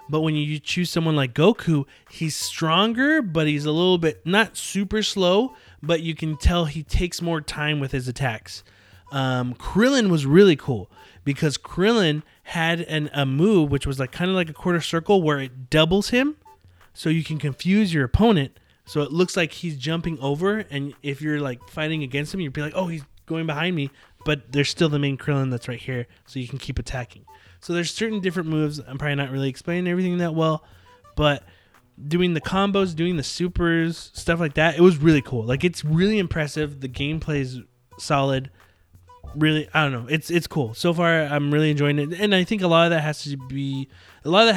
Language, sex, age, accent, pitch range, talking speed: English, male, 20-39, American, 130-170 Hz, 210 wpm